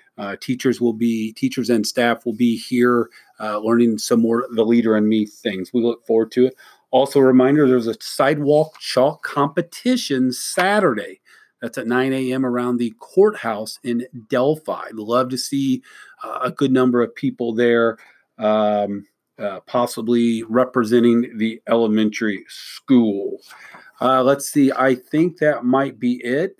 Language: English